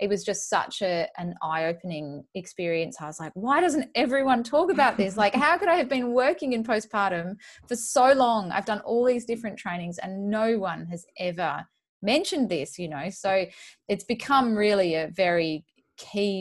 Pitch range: 170-220 Hz